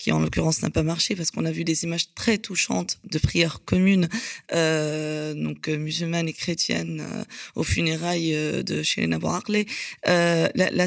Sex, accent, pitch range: female, French, 160-185 Hz